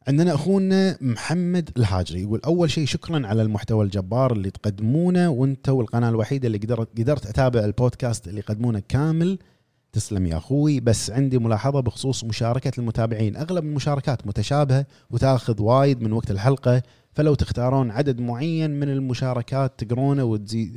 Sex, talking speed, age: male, 135 wpm, 30-49